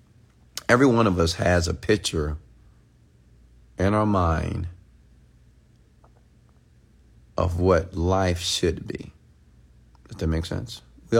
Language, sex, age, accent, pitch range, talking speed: English, male, 40-59, American, 80-100 Hz, 105 wpm